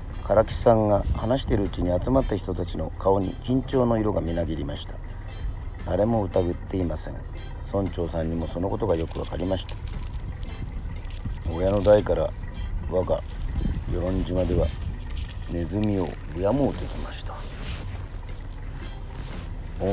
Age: 40-59